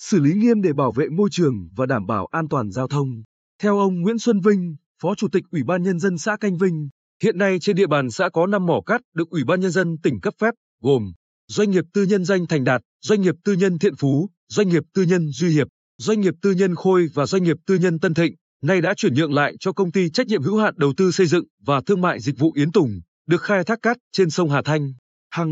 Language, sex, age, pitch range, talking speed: Vietnamese, male, 20-39, 145-200 Hz, 265 wpm